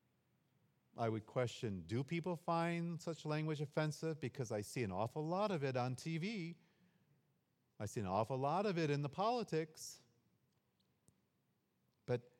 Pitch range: 105-140 Hz